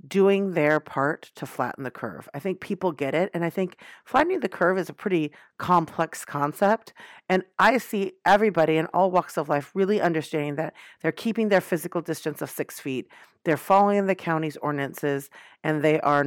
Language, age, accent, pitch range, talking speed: English, 40-59, American, 145-180 Hz, 190 wpm